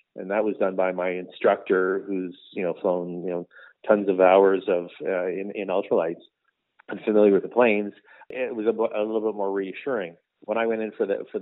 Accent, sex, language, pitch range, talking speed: American, male, English, 95-115 Hz, 220 wpm